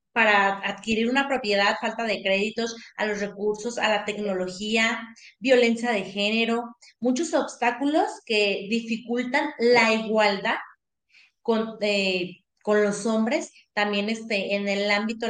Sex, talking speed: female, 120 wpm